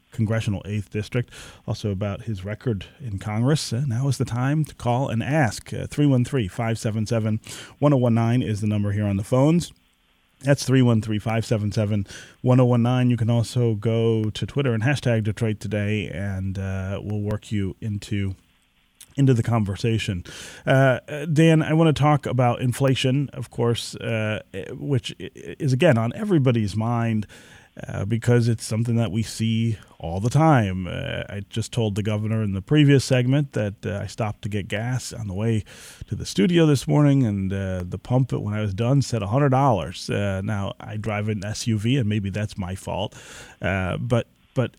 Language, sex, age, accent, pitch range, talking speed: English, male, 30-49, American, 105-130 Hz, 165 wpm